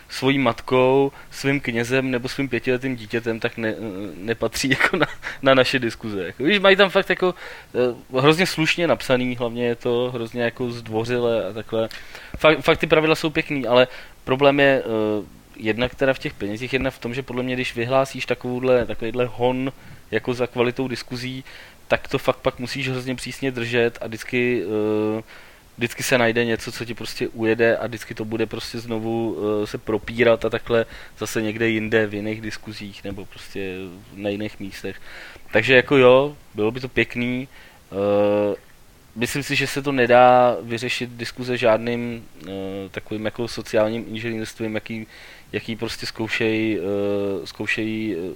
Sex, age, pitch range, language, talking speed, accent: male, 20-39, 110-130 Hz, Czech, 160 wpm, native